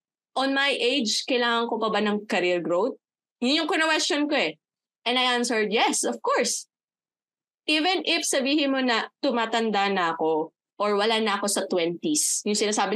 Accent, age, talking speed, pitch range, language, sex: native, 20-39, 170 wpm, 195-265 Hz, Filipino, female